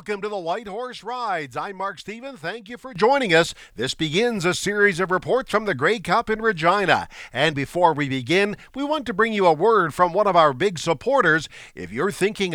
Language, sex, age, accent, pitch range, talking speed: English, male, 50-69, American, 155-225 Hz, 220 wpm